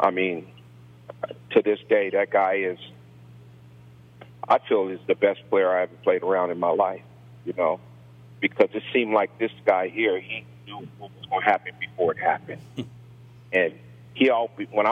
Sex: male